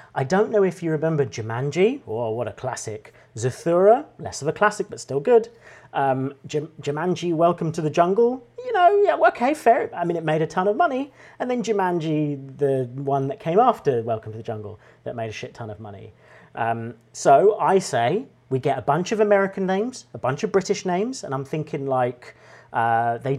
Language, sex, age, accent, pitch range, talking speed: English, male, 40-59, British, 125-180 Hz, 205 wpm